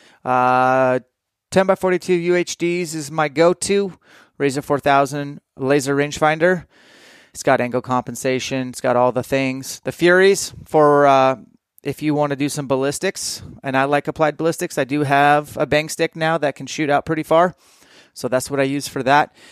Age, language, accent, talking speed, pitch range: 30-49, English, American, 175 wpm, 135-160 Hz